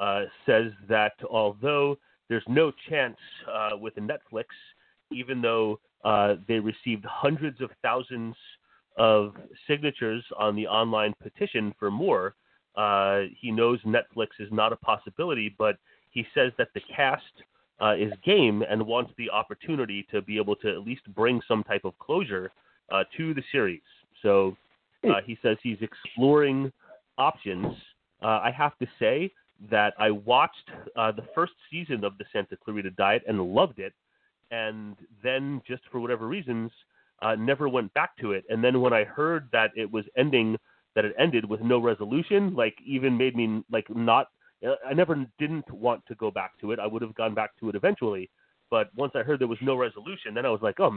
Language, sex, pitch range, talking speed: English, male, 105-135 Hz, 180 wpm